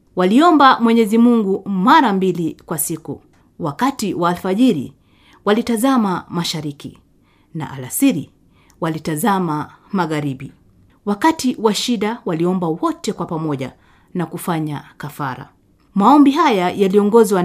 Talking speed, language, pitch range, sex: 100 wpm, Indonesian, 170-245 Hz, female